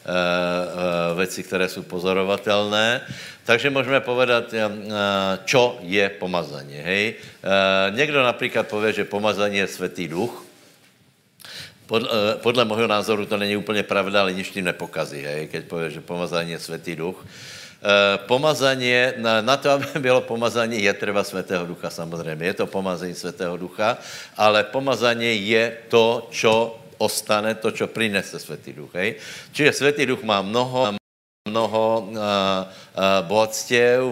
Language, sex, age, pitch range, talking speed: Slovak, male, 60-79, 95-115 Hz, 135 wpm